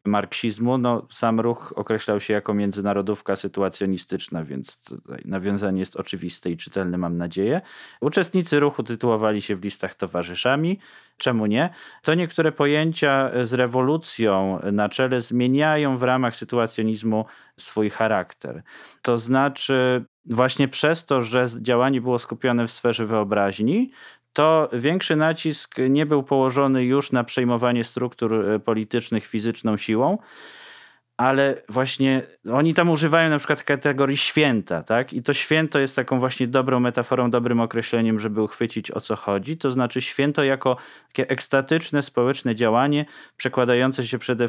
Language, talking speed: Polish, 140 wpm